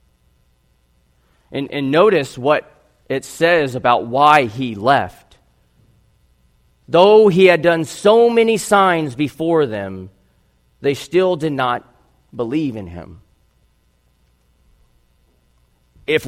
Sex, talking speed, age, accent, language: male, 100 wpm, 40-59, American, English